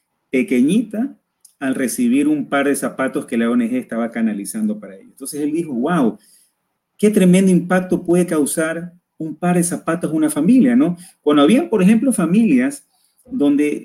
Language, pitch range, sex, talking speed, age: Spanish, 155-230 Hz, male, 160 wpm, 40-59